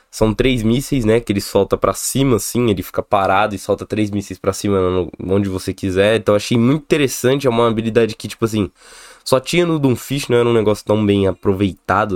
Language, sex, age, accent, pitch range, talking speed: Portuguese, male, 20-39, Brazilian, 100-140 Hz, 220 wpm